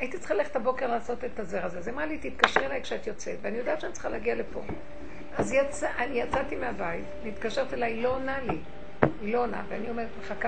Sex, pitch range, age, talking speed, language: female, 185-235 Hz, 50-69, 225 wpm, Hebrew